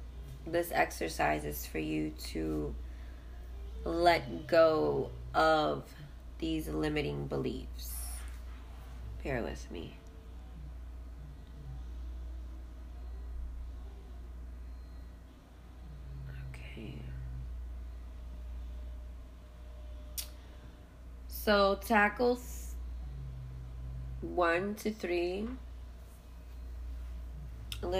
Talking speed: 40 wpm